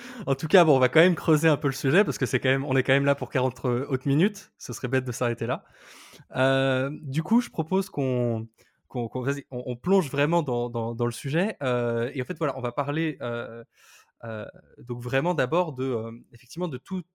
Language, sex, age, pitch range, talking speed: French, male, 20-39, 120-160 Hz, 240 wpm